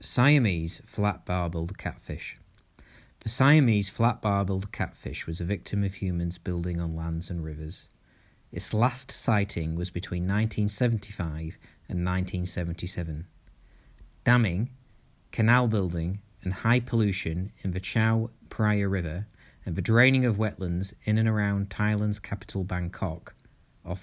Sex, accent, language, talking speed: male, British, English, 120 wpm